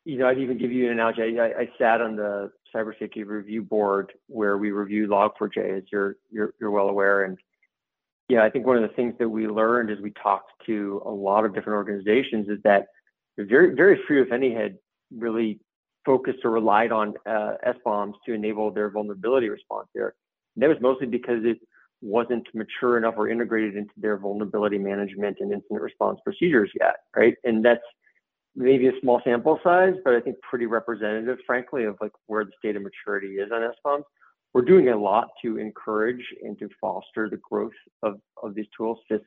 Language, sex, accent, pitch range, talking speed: English, male, American, 105-120 Hz, 195 wpm